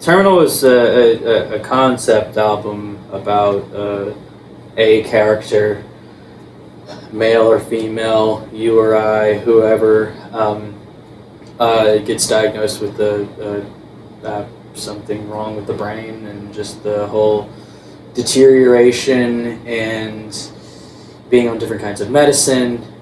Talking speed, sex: 105 wpm, male